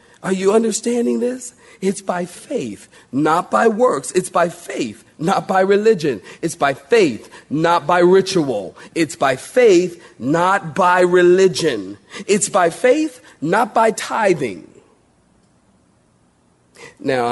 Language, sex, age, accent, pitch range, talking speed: English, male, 40-59, American, 125-190 Hz, 120 wpm